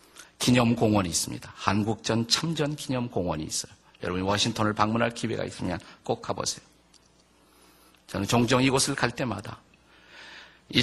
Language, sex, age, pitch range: Korean, male, 50-69, 110-155 Hz